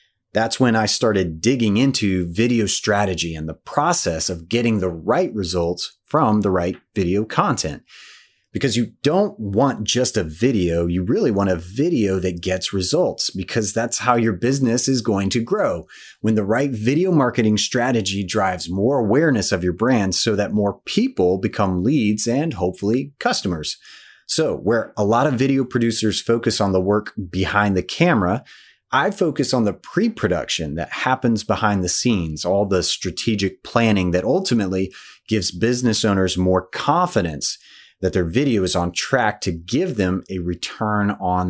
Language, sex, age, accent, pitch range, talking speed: English, male, 30-49, American, 90-115 Hz, 165 wpm